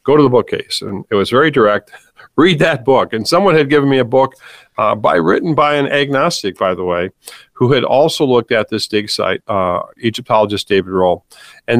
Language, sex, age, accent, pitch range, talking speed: English, male, 50-69, American, 110-150 Hz, 210 wpm